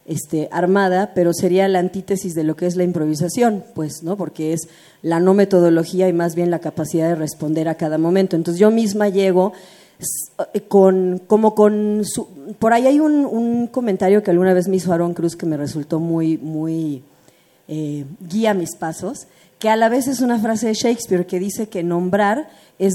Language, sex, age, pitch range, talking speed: Spanish, female, 40-59, 175-235 Hz, 190 wpm